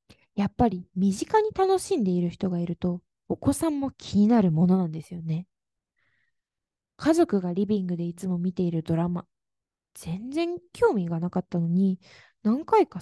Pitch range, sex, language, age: 190-270 Hz, female, Japanese, 20-39